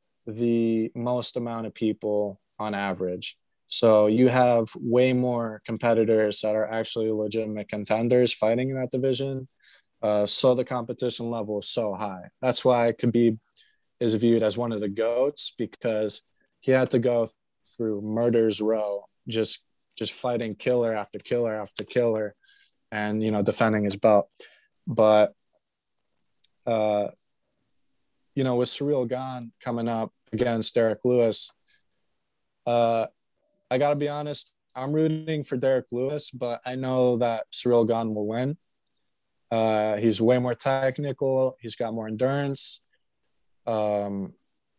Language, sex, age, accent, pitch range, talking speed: English, male, 20-39, American, 110-130 Hz, 140 wpm